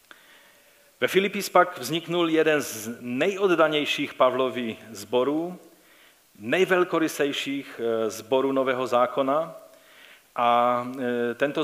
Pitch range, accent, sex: 115-160 Hz, native, male